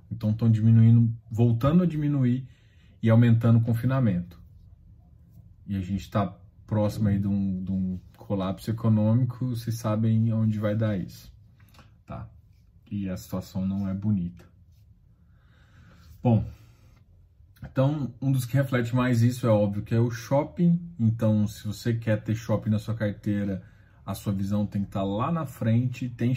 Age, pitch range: 20-39, 100-115 Hz